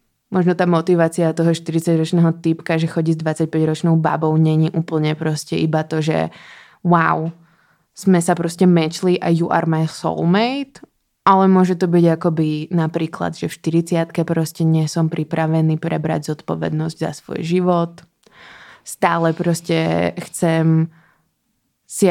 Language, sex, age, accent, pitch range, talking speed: Czech, female, 20-39, native, 160-180 Hz, 130 wpm